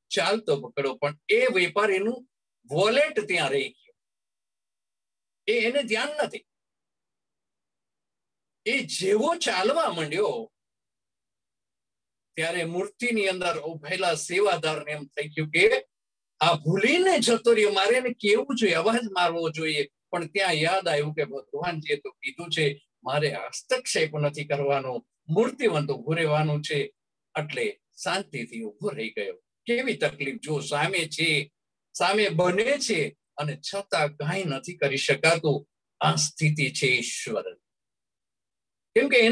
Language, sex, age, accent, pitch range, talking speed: Gujarati, male, 50-69, native, 150-245 Hz, 90 wpm